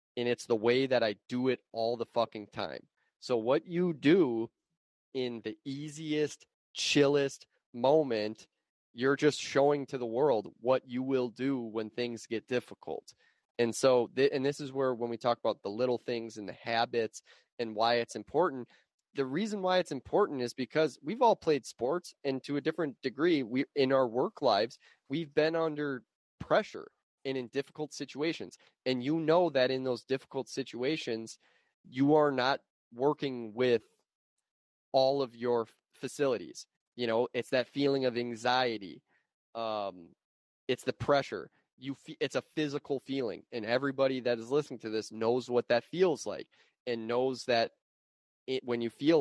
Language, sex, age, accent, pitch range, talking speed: English, male, 20-39, American, 120-140 Hz, 165 wpm